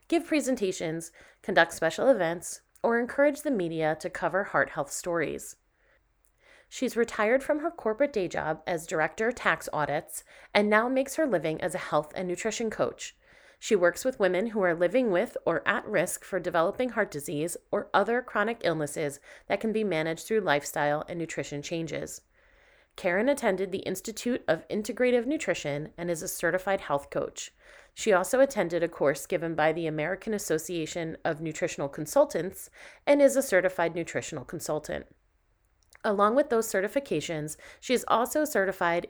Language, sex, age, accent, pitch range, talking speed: English, female, 30-49, American, 160-230 Hz, 160 wpm